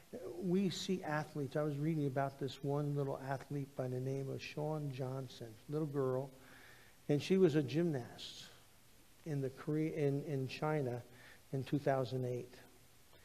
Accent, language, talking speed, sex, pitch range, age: American, English, 125 wpm, male, 130-160 Hz, 50-69